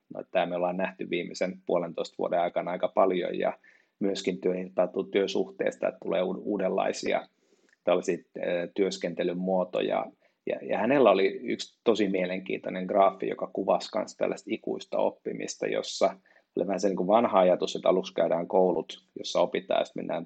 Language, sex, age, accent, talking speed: Finnish, male, 30-49, native, 140 wpm